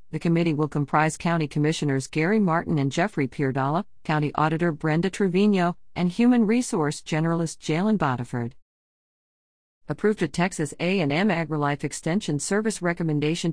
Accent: American